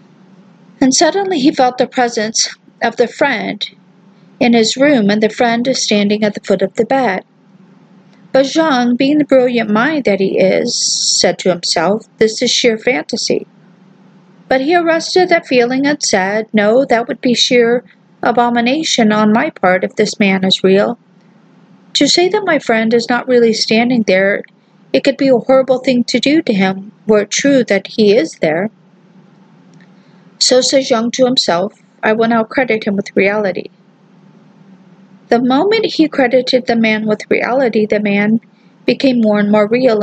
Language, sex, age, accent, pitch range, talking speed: English, female, 50-69, American, 195-250 Hz, 170 wpm